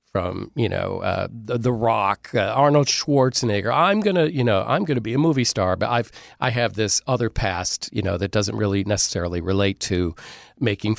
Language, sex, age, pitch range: English, male, 40-59, 105-140 Hz